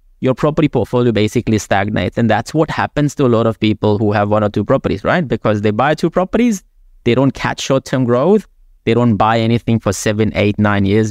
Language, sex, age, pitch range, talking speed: English, male, 20-39, 105-135 Hz, 215 wpm